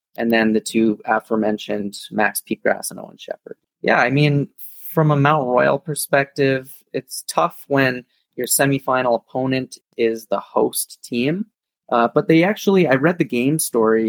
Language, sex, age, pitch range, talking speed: English, male, 20-39, 110-130 Hz, 160 wpm